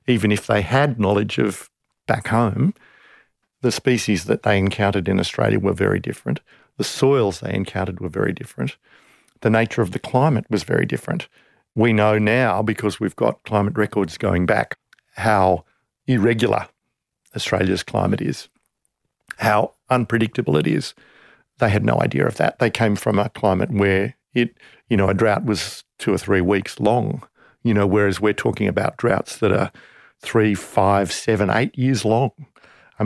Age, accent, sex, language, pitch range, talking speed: 50-69, Australian, male, English, 100-120 Hz, 165 wpm